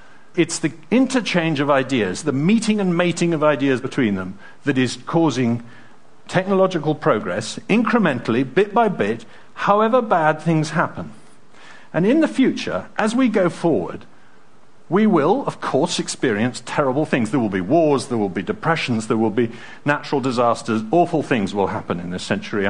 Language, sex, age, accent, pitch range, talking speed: English, male, 50-69, British, 130-215 Hz, 160 wpm